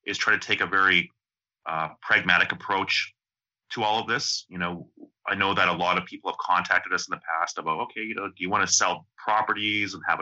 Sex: male